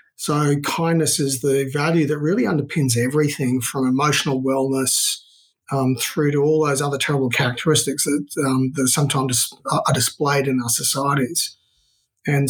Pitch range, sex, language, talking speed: 130-150 Hz, male, English, 140 wpm